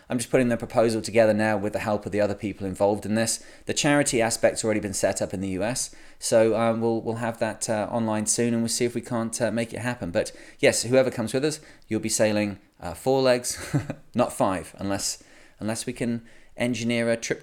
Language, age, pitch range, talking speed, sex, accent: English, 20-39, 105-125 Hz, 230 wpm, male, British